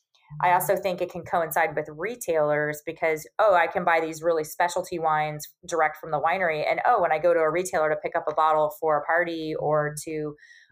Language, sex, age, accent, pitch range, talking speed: English, female, 20-39, American, 150-175 Hz, 225 wpm